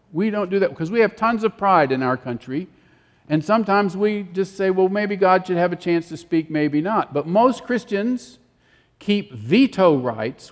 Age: 50-69